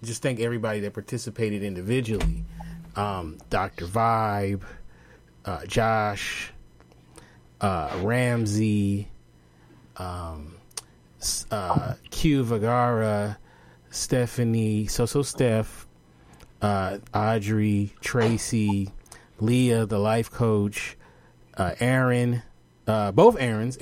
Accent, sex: American, male